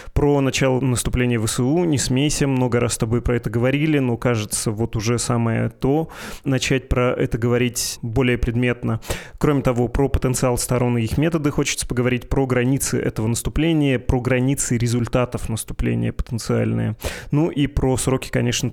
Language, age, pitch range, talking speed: Russian, 20-39, 115-135 Hz, 160 wpm